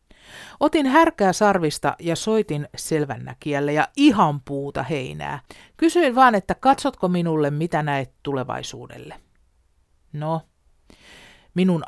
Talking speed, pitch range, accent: 100 wpm, 145-195 Hz, native